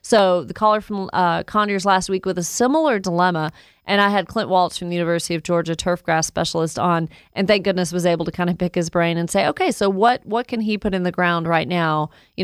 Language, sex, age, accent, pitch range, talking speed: English, female, 30-49, American, 170-195 Hz, 245 wpm